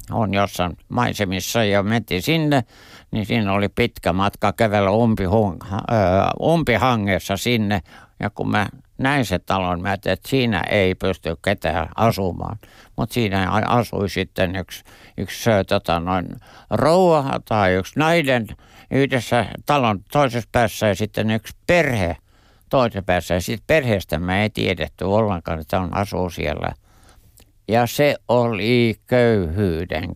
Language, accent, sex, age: Finnish, native, male, 60-79